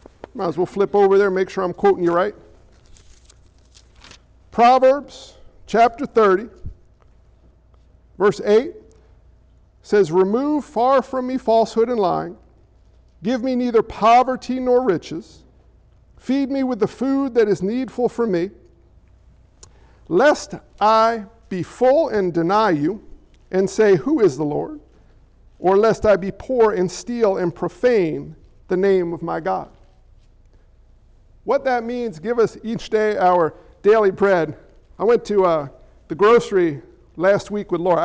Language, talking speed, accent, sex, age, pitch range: English, 140 wpm, American, male, 50-69, 175-225 Hz